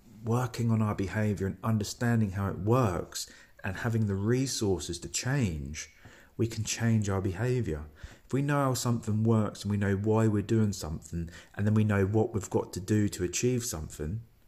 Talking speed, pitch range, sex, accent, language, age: 185 wpm, 95-120 Hz, male, British, English, 40-59